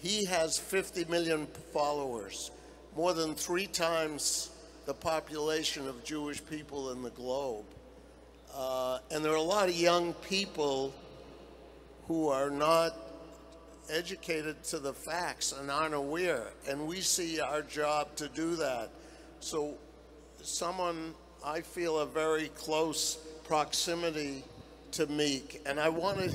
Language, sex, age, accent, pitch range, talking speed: English, male, 60-79, American, 145-165 Hz, 130 wpm